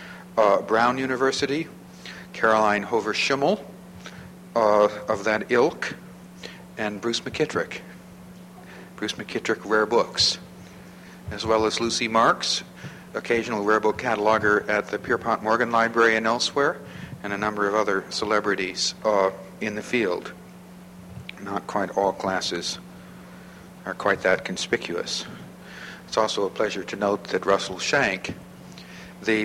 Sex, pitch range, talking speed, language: male, 100-115 Hz, 120 wpm, English